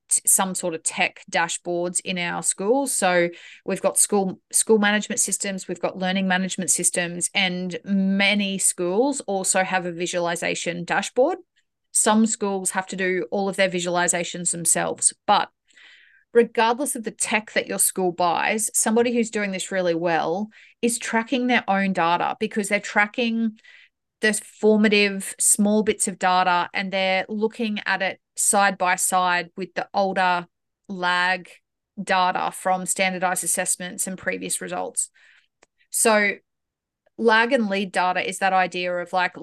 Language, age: English, 30-49